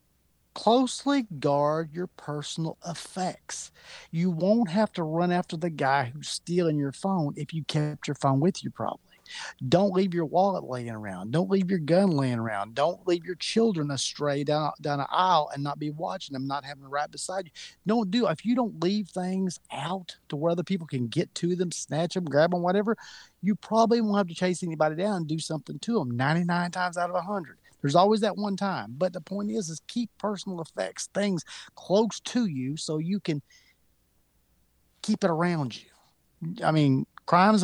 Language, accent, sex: English, American, male